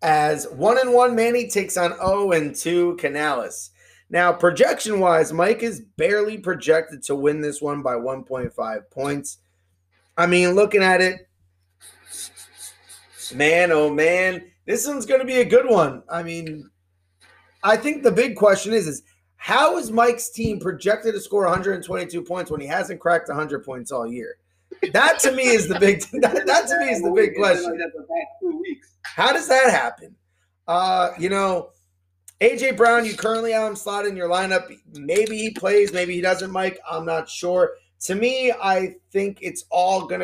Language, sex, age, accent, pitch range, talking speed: English, male, 30-49, American, 155-220 Hz, 170 wpm